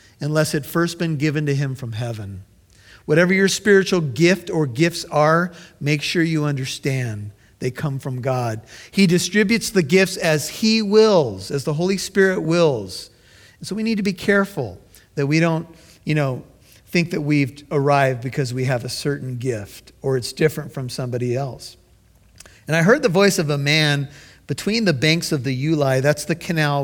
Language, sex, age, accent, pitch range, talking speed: English, male, 50-69, American, 140-200 Hz, 180 wpm